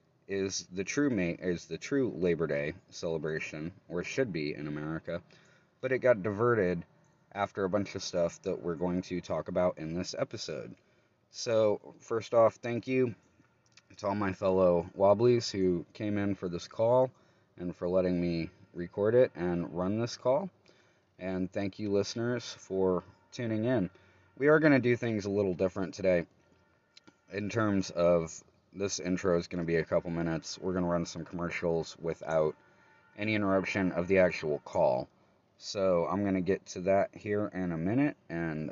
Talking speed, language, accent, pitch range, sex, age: 175 wpm, English, American, 85-105 Hz, male, 30-49